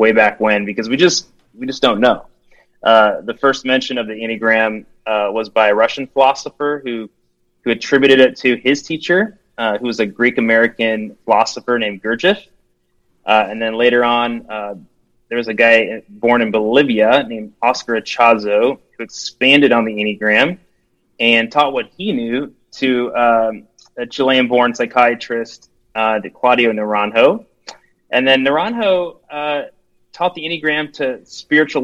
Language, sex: English, male